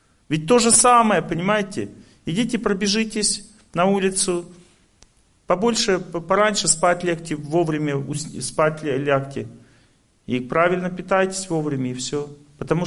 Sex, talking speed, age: male, 105 wpm, 40-59